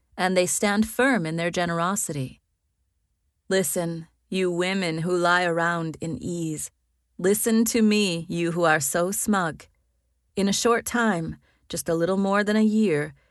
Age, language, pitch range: 30-49, English, 150-190 Hz